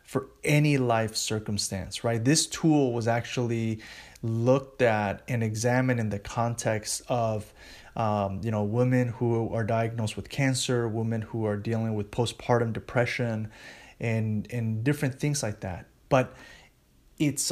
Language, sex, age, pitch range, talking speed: English, male, 20-39, 110-130 Hz, 140 wpm